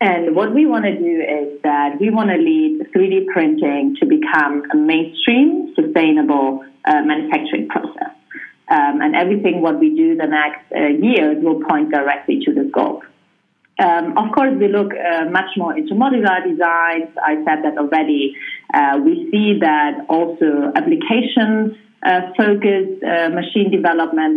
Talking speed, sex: 160 wpm, female